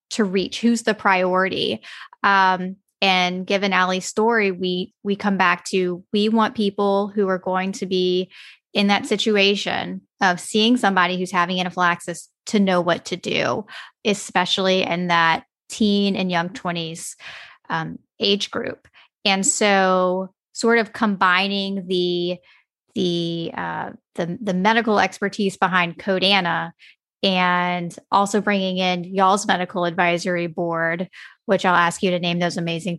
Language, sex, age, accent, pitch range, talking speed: English, female, 10-29, American, 180-205 Hz, 140 wpm